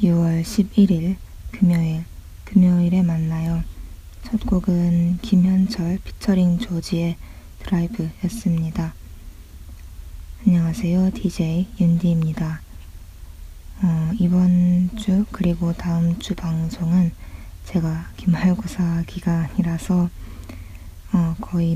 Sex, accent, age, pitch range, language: female, native, 20-39, 160-180 Hz, Korean